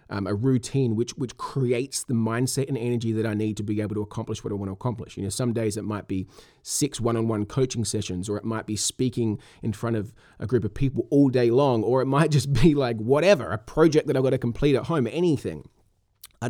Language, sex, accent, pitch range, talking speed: English, male, Australian, 105-130 Hz, 245 wpm